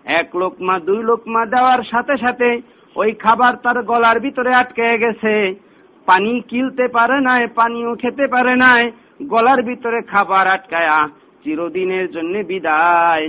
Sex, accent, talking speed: male, native, 50 wpm